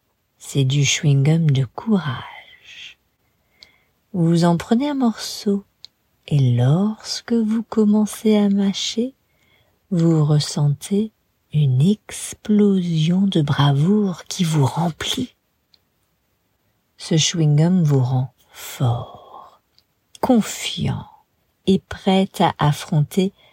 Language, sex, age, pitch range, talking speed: English, female, 50-69, 150-210 Hz, 90 wpm